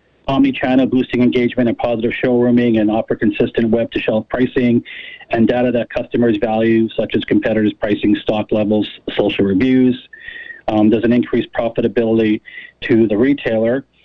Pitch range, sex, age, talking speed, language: 115-135 Hz, male, 40-59, 135 wpm, English